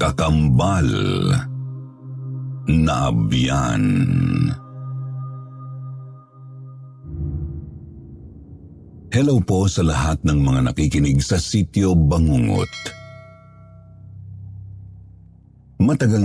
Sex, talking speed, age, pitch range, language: male, 50 wpm, 60-79, 80-130 Hz, Filipino